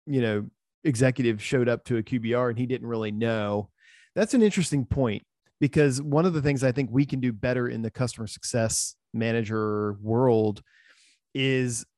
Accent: American